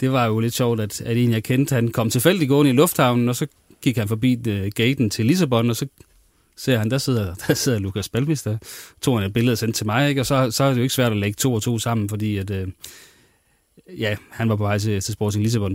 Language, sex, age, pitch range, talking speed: Danish, male, 30-49, 105-130 Hz, 255 wpm